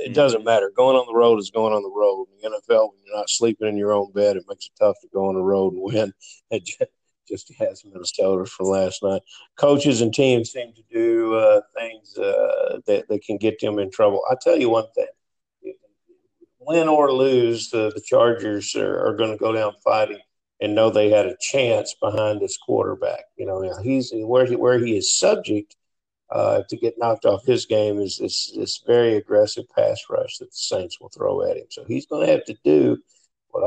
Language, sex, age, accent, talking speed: English, male, 50-69, American, 225 wpm